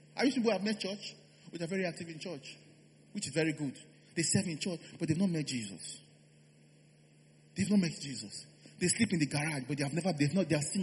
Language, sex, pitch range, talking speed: English, male, 135-175 Hz, 250 wpm